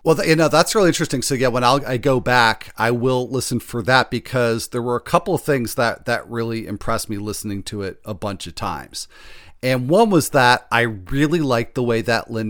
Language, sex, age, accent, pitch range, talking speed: English, male, 40-59, American, 105-130 Hz, 230 wpm